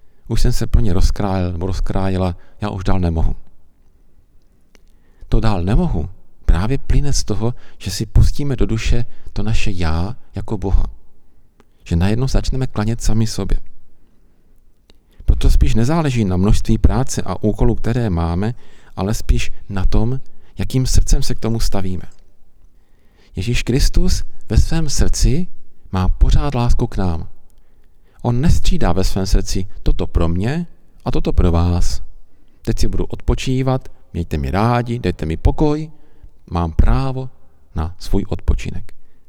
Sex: male